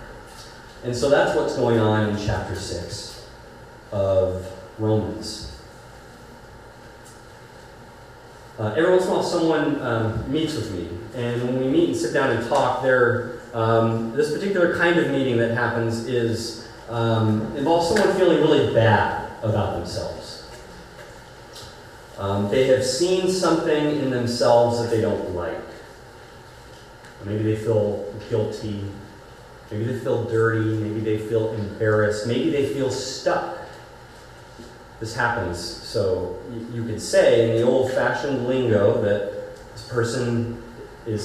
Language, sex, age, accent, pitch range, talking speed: English, male, 30-49, American, 115-155 Hz, 135 wpm